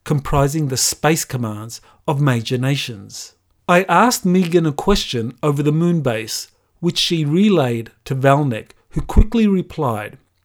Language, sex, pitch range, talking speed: English, male, 125-165 Hz, 140 wpm